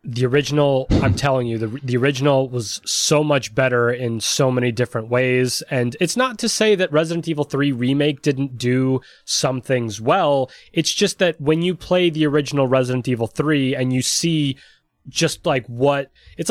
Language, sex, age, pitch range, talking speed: English, male, 20-39, 125-160 Hz, 180 wpm